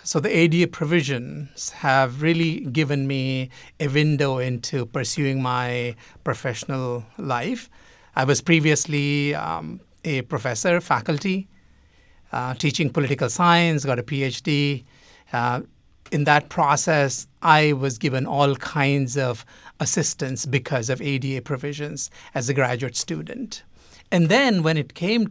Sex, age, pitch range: male, 60-79, 130-155 Hz